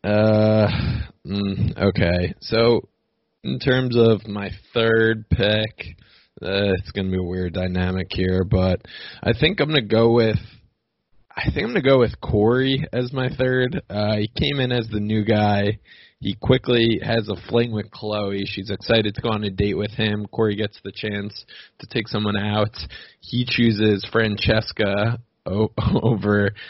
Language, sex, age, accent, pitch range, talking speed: English, male, 20-39, American, 100-115 Hz, 160 wpm